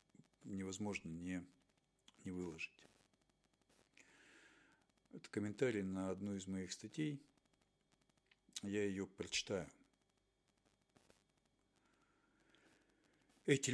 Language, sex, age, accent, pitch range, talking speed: Russian, male, 50-69, native, 95-115 Hz, 65 wpm